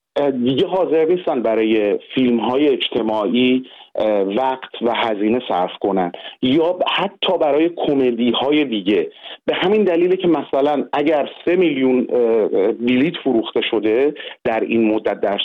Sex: male